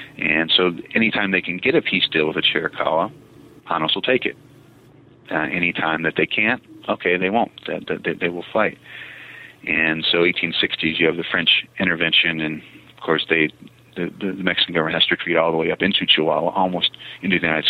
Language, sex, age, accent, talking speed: English, male, 40-59, American, 205 wpm